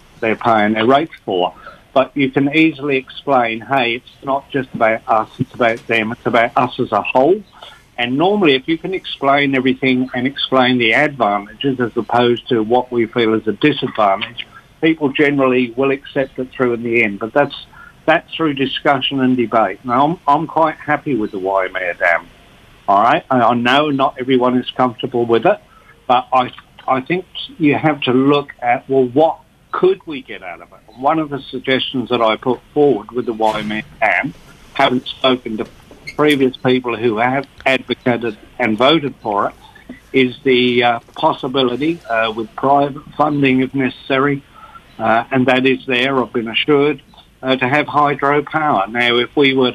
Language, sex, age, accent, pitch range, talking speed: English, male, 60-79, British, 120-140 Hz, 180 wpm